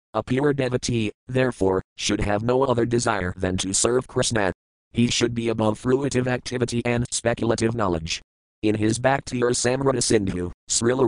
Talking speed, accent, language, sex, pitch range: 150 wpm, American, English, male, 105-125 Hz